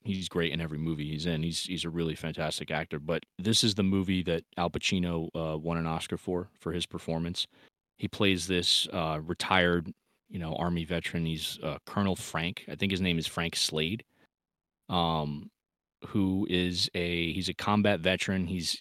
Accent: American